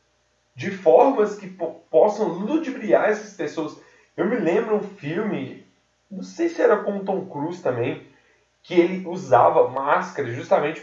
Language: Portuguese